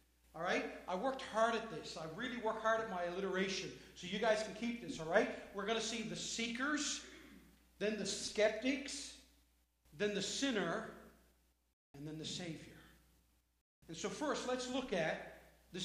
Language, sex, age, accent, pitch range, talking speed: English, male, 40-59, American, 195-255 Hz, 170 wpm